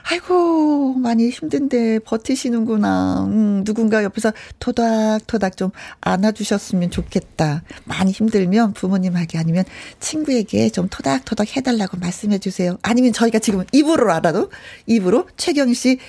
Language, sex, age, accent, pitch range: Korean, female, 40-59, native, 185-255 Hz